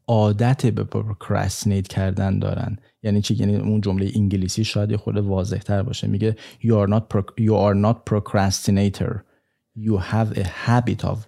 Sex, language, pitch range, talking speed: male, Persian, 105-130 Hz, 150 wpm